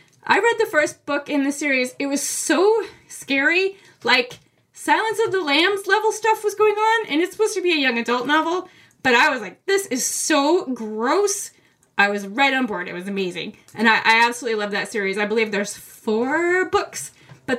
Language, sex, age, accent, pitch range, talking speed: English, female, 20-39, American, 225-340 Hz, 205 wpm